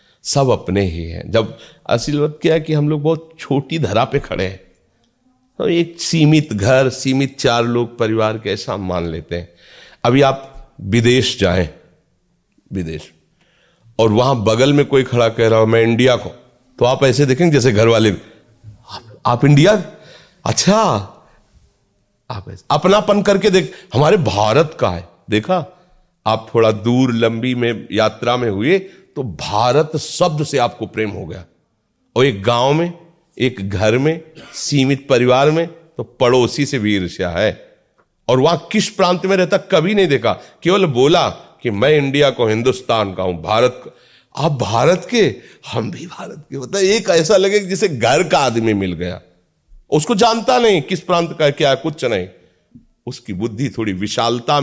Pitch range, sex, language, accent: 110-160 Hz, male, Hindi, native